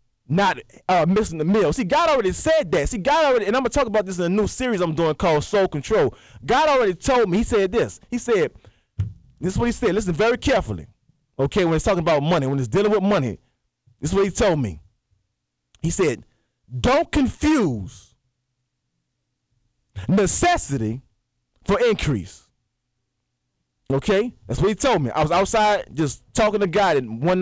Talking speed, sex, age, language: 185 wpm, male, 20-39, English